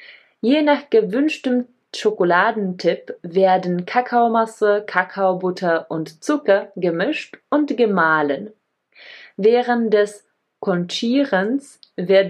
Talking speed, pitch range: 80 wpm, 170-225 Hz